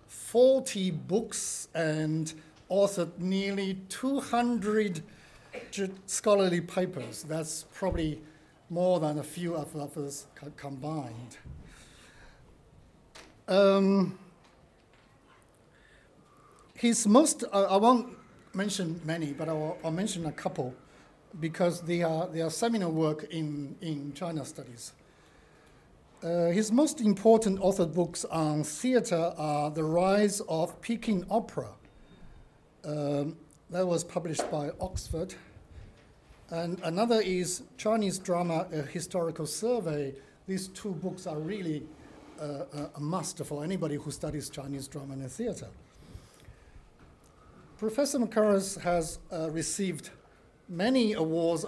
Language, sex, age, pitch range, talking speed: English, male, 50-69, 155-195 Hz, 110 wpm